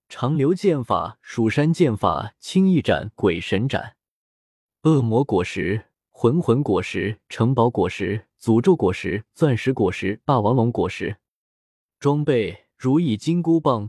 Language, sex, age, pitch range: Chinese, male, 20-39, 110-160 Hz